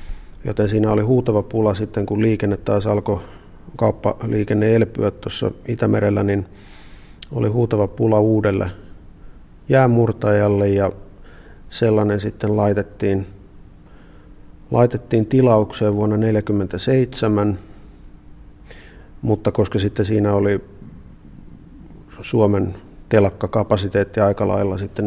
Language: Finnish